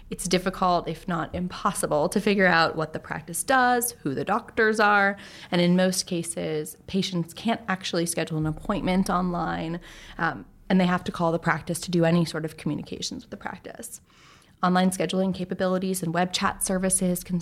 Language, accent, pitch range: English, American, 170-195 Hz